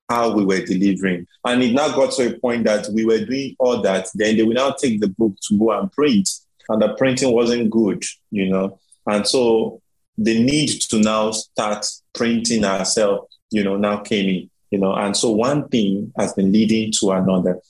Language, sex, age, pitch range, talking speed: English, male, 30-49, 100-125 Hz, 205 wpm